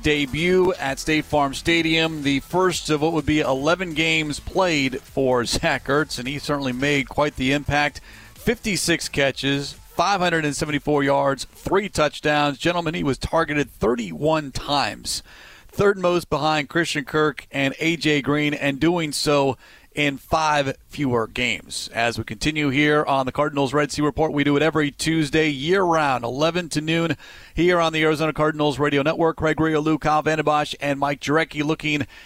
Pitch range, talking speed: 130-155 Hz, 160 wpm